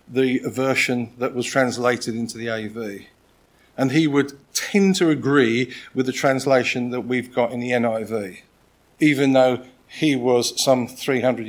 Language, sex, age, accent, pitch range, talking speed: English, male, 50-69, British, 130-175 Hz, 150 wpm